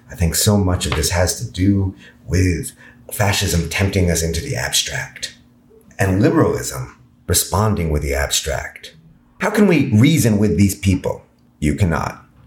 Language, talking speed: English, 150 wpm